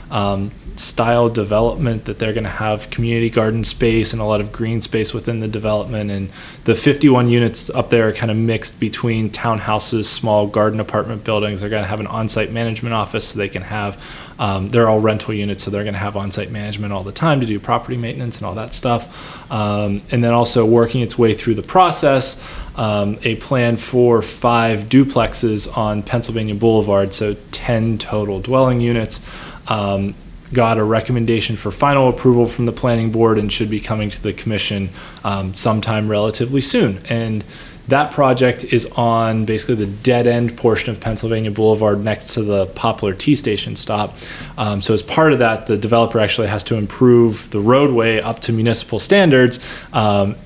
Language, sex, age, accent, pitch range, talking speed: English, male, 20-39, American, 105-120 Hz, 185 wpm